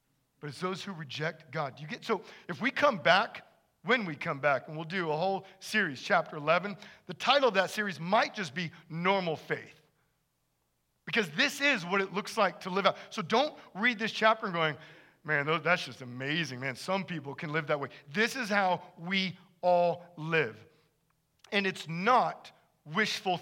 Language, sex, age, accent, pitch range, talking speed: English, male, 40-59, American, 145-195 Hz, 190 wpm